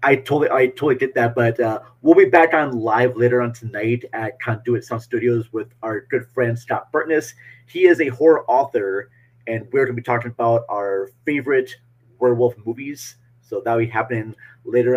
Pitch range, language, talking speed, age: 120-145 Hz, English, 185 wpm, 30-49